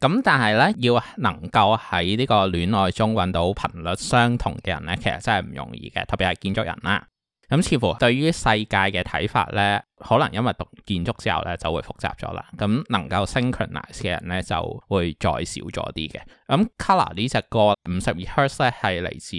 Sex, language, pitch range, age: male, Chinese, 90-110 Hz, 20-39